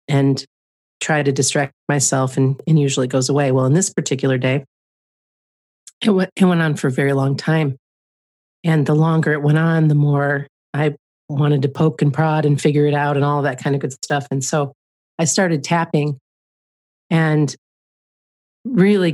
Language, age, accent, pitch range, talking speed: English, 40-59, American, 135-165 Hz, 180 wpm